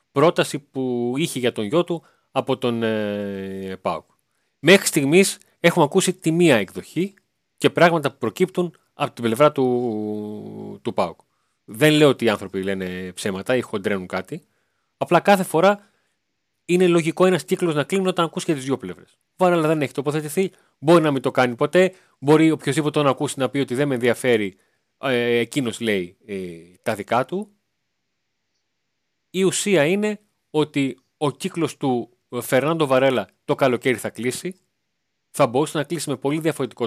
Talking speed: 160 wpm